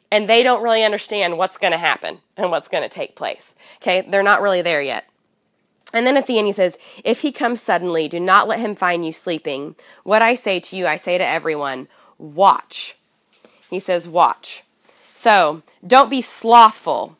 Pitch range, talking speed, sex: 195-260 Hz, 195 wpm, female